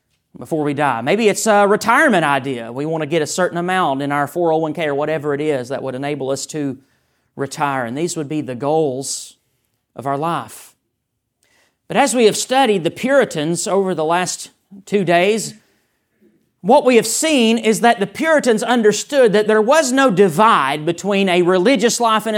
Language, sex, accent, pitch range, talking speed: English, male, American, 180-265 Hz, 180 wpm